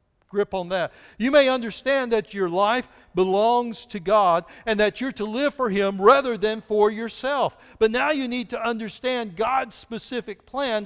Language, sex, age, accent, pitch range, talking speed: English, male, 60-79, American, 170-250 Hz, 170 wpm